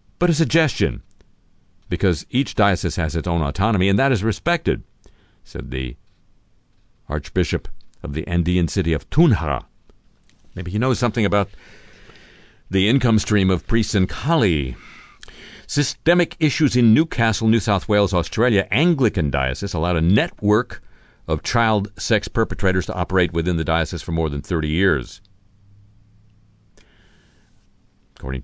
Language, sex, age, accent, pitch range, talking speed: English, male, 50-69, American, 85-110 Hz, 135 wpm